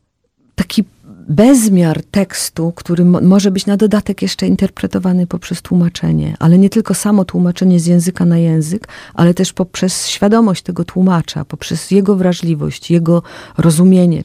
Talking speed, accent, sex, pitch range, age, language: 135 wpm, native, female, 170-190 Hz, 40-59, Polish